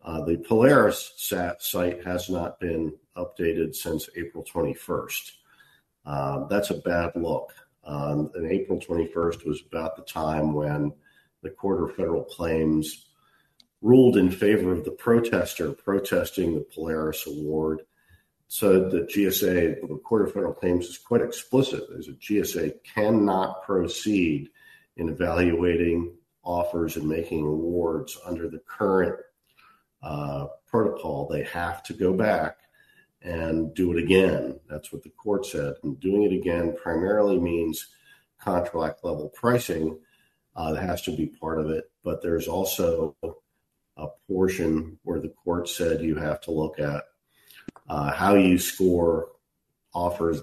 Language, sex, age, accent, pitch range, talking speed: English, male, 50-69, American, 80-90 Hz, 140 wpm